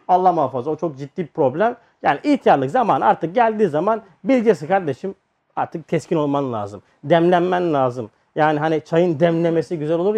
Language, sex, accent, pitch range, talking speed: Turkish, male, native, 160-225 Hz, 160 wpm